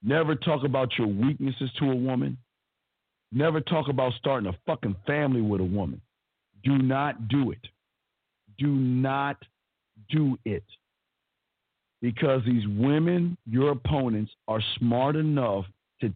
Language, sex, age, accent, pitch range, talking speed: English, male, 50-69, American, 115-150 Hz, 130 wpm